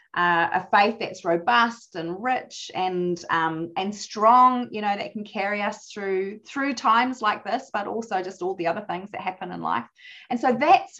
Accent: Australian